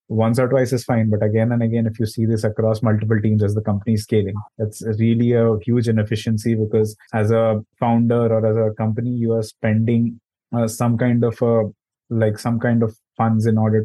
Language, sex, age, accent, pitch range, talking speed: English, male, 20-39, Indian, 110-120 Hz, 220 wpm